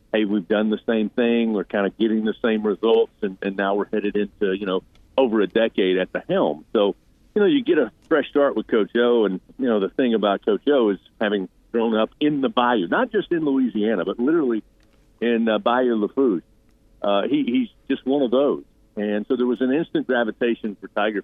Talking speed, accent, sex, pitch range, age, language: 225 wpm, American, male, 105-125 Hz, 50-69, English